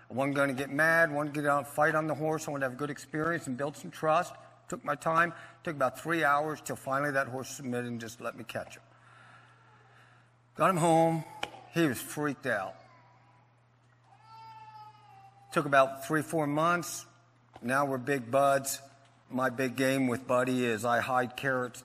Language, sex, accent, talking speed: English, male, American, 185 wpm